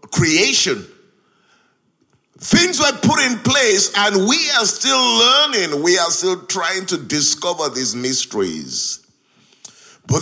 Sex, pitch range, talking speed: male, 180-260 Hz, 115 wpm